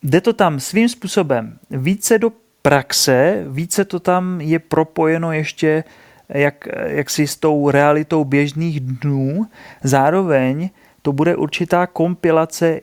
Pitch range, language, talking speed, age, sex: 135-155 Hz, Czech, 115 wpm, 30-49, male